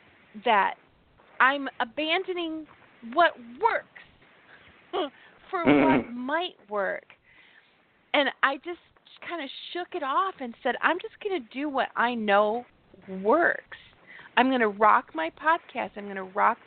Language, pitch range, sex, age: English, 220-295 Hz, female, 30-49